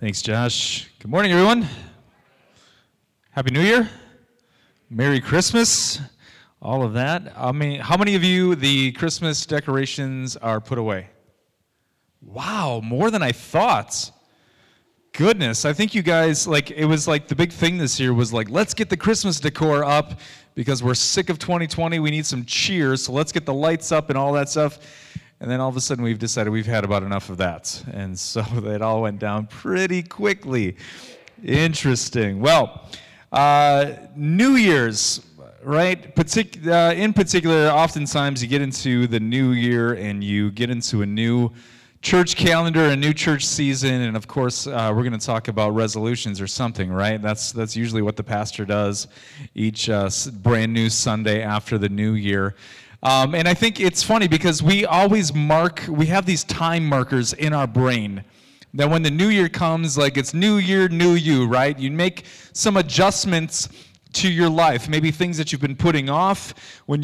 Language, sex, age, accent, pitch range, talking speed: English, male, 30-49, American, 115-170 Hz, 175 wpm